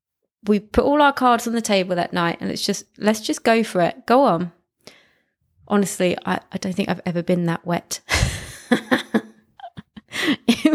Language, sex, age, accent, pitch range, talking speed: English, female, 20-39, British, 190-240 Hz, 175 wpm